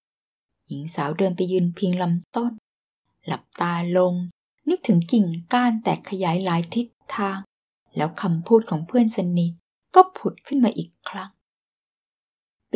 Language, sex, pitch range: Thai, female, 185-265 Hz